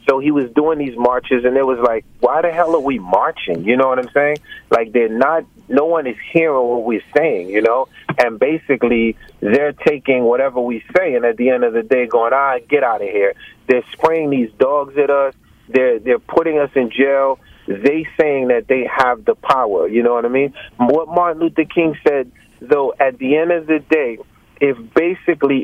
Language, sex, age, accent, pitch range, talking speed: English, male, 30-49, American, 130-165 Hz, 215 wpm